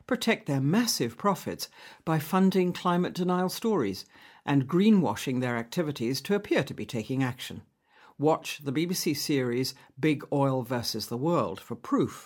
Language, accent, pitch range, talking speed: English, British, 130-190 Hz, 145 wpm